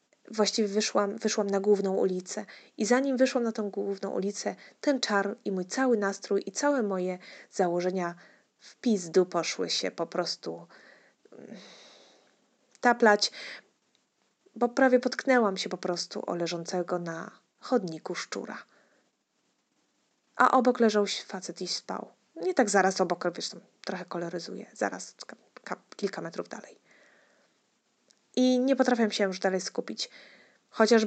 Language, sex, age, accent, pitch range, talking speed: Polish, female, 20-39, native, 200-245 Hz, 130 wpm